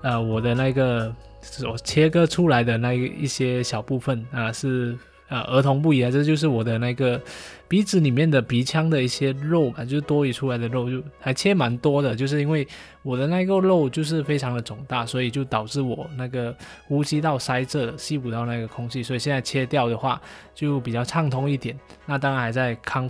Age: 20-39